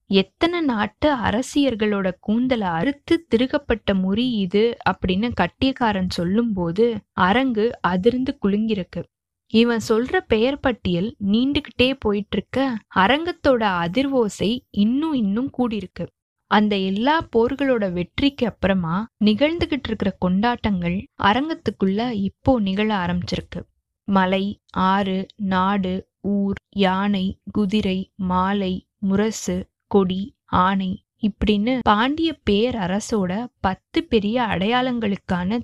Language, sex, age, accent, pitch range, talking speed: Tamil, female, 20-39, native, 190-245 Hz, 90 wpm